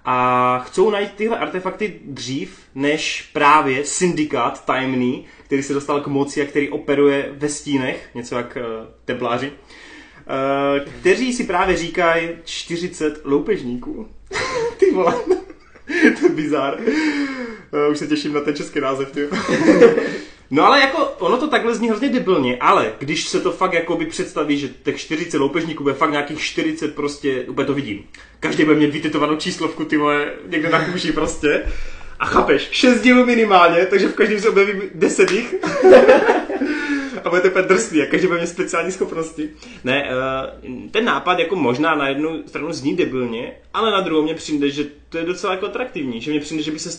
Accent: native